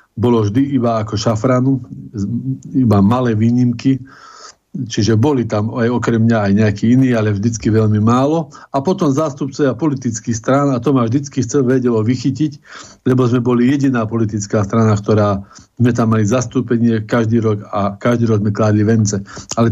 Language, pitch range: Slovak, 110-135 Hz